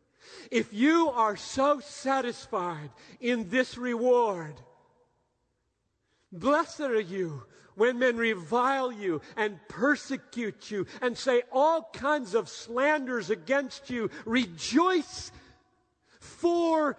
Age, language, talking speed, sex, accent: 50-69, English, 100 wpm, male, American